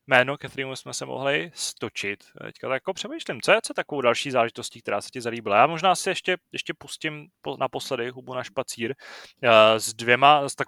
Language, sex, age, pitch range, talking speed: Czech, male, 20-39, 110-140 Hz, 200 wpm